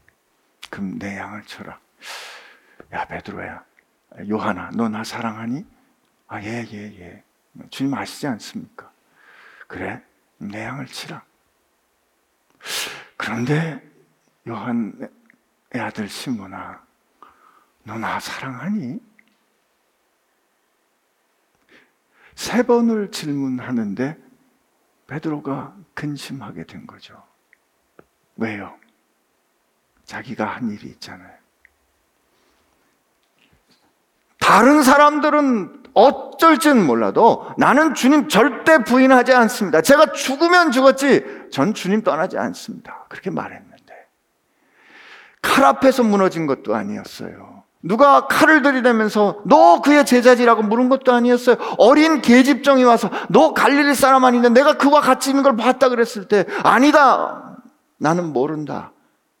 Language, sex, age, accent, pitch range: Korean, male, 50-69, native, 170-285 Hz